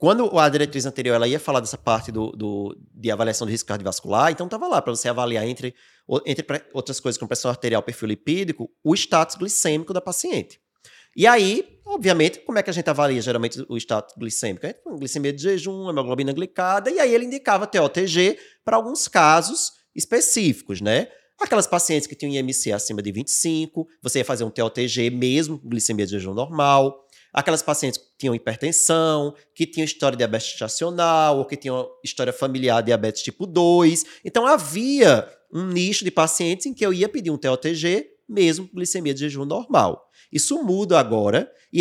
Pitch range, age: 125-185 Hz, 20-39